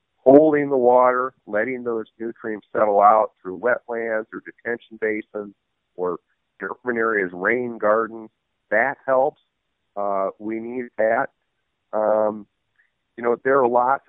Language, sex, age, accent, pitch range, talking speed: English, male, 50-69, American, 105-120 Hz, 130 wpm